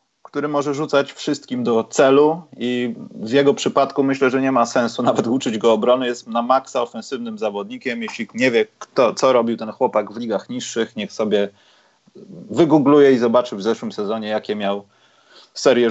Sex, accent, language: male, native, Polish